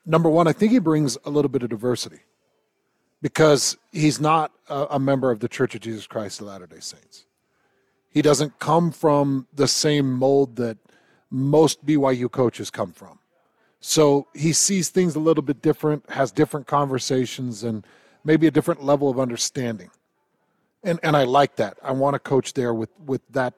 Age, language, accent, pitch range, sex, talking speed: 40-59, English, American, 125-155 Hz, male, 175 wpm